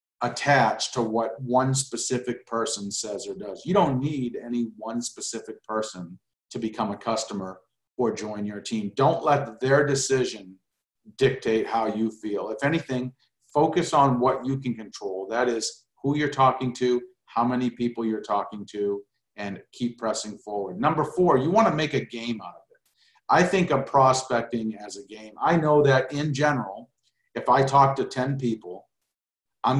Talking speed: 170 wpm